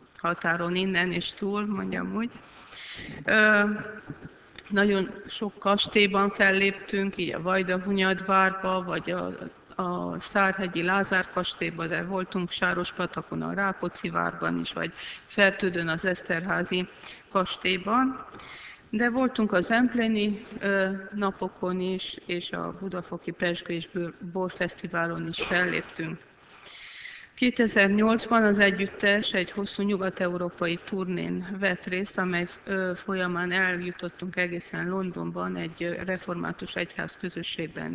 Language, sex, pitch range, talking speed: Hungarian, female, 175-200 Hz, 100 wpm